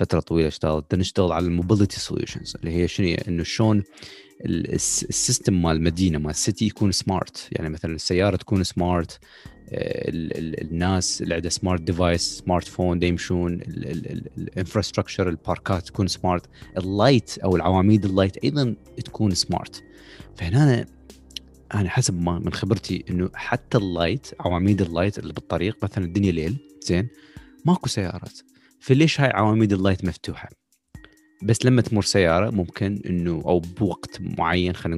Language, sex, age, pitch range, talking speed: Arabic, male, 30-49, 85-105 Hz, 135 wpm